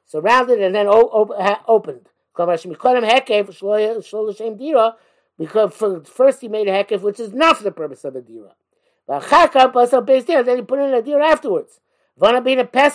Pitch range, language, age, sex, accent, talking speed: 165-240 Hz, English, 50-69, male, American, 140 wpm